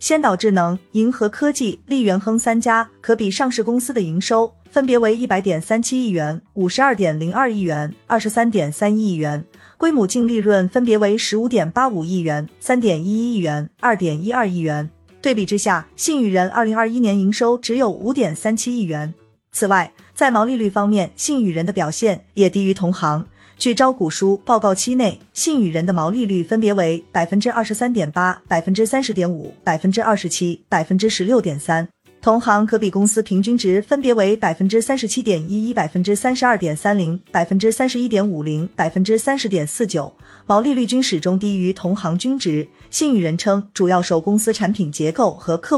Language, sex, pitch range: Chinese, female, 180-230 Hz